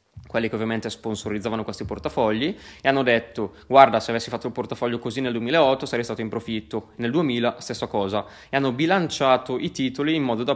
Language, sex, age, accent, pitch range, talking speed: Italian, male, 20-39, native, 110-130 Hz, 195 wpm